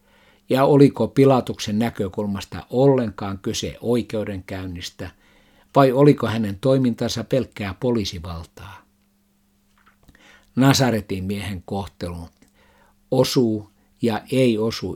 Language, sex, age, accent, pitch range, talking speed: Finnish, male, 60-79, native, 95-115 Hz, 80 wpm